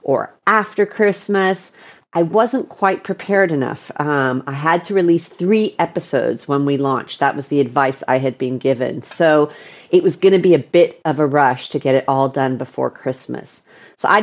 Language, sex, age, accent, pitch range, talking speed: English, female, 40-59, American, 140-190 Hz, 190 wpm